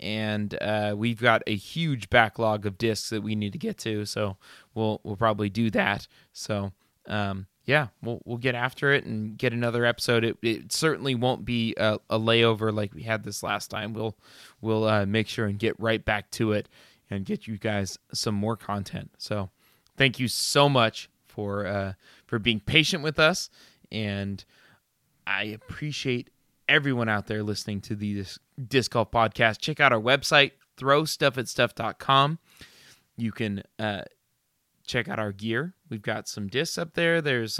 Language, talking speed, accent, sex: English, 175 wpm, American, male